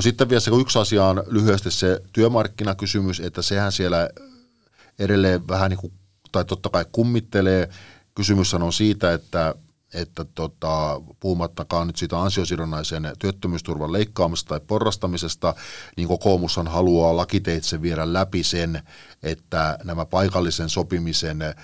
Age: 50-69